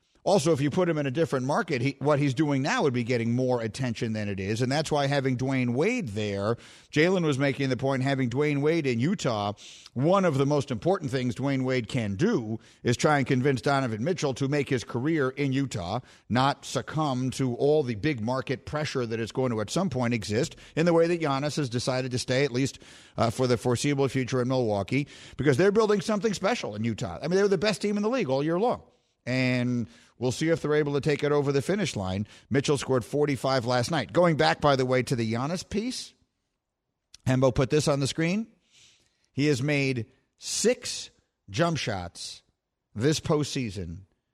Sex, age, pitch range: male, 50-69, 120-155 Hz